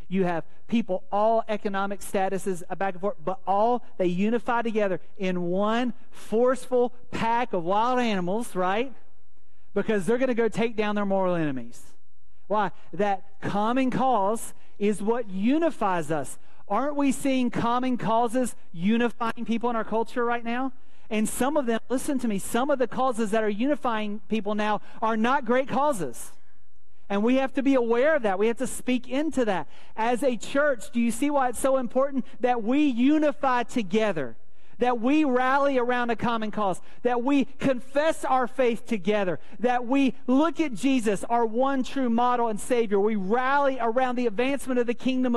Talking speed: 175 wpm